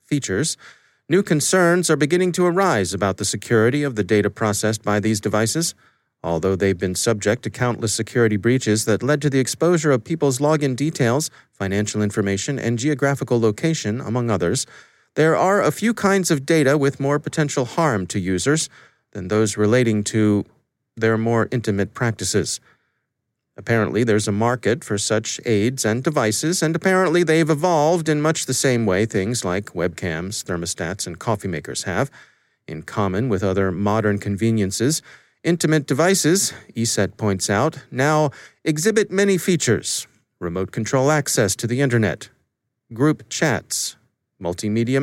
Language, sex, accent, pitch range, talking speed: English, male, American, 105-155 Hz, 150 wpm